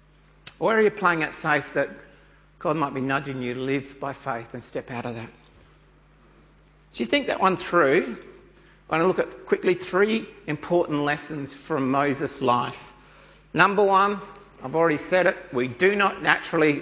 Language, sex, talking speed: English, male, 175 wpm